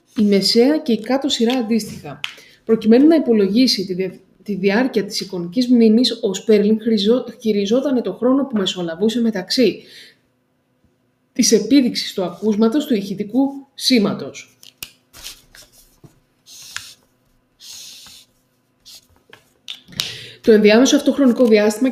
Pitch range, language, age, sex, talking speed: 200-250 Hz, Greek, 20-39, female, 95 wpm